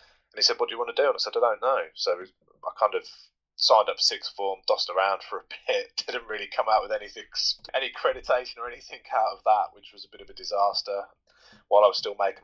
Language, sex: English, male